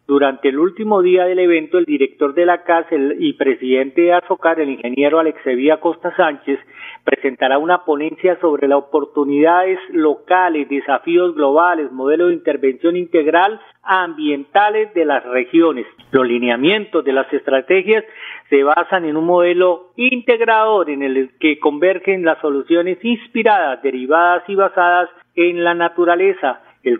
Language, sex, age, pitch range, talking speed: Spanish, male, 40-59, 145-190 Hz, 140 wpm